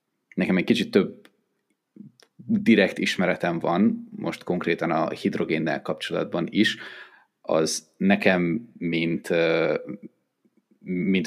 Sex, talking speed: male, 90 wpm